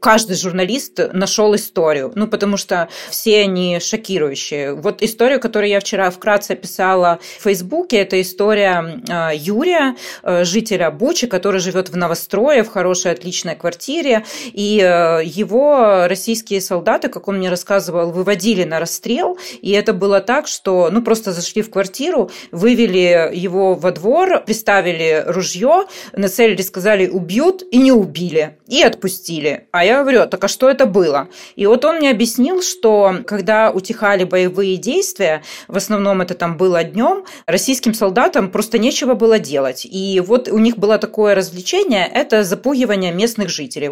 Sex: female